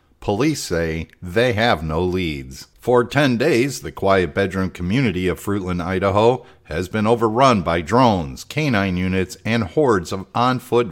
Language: English